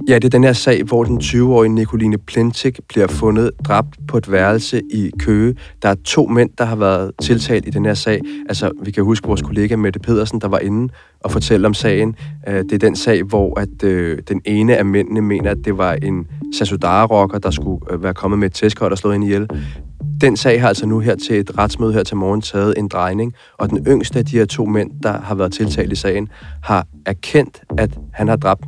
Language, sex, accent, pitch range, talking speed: Danish, male, native, 95-115 Hz, 230 wpm